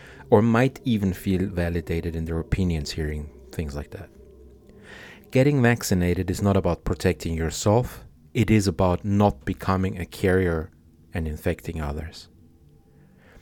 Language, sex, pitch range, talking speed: English, male, 85-110 Hz, 130 wpm